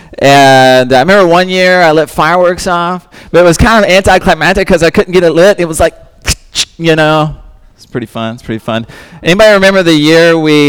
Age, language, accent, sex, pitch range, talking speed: 30-49, English, American, male, 130-180 Hz, 210 wpm